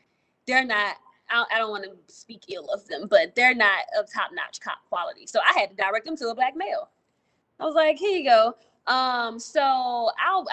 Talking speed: 205 wpm